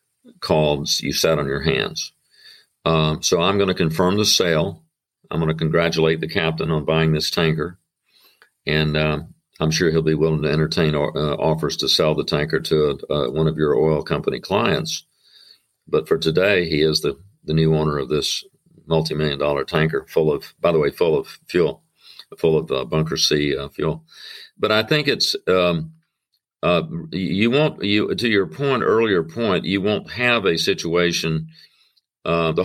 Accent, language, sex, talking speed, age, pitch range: American, English, male, 180 wpm, 50-69, 80-105 Hz